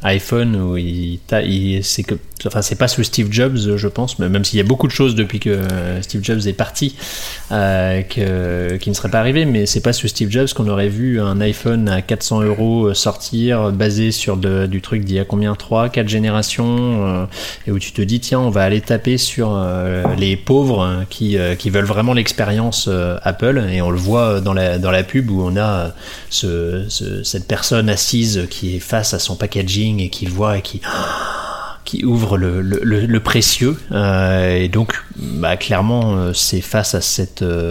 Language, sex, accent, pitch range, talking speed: French, male, French, 95-115 Hz, 205 wpm